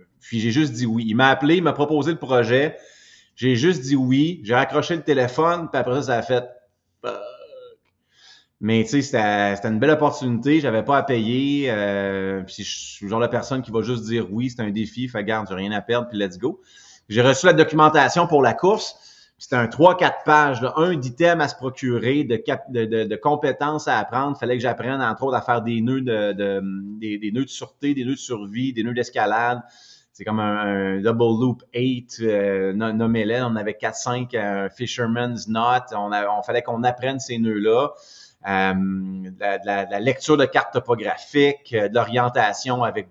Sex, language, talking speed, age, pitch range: male, French, 200 wpm, 30-49, 105-135 Hz